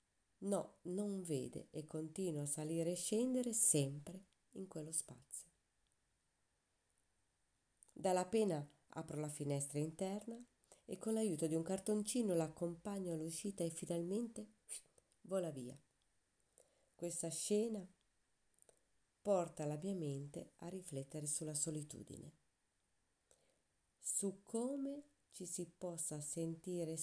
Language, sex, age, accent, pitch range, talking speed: Italian, female, 30-49, native, 130-185 Hz, 105 wpm